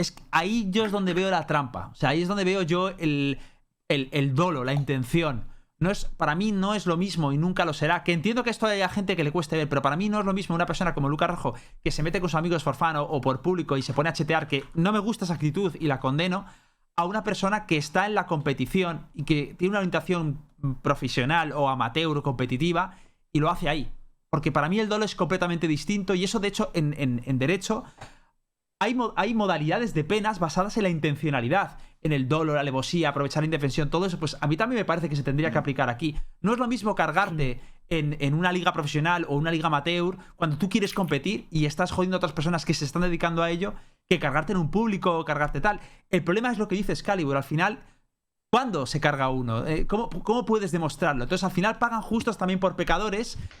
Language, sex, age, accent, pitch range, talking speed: Spanish, male, 30-49, Spanish, 150-190 Hz, 235 wpm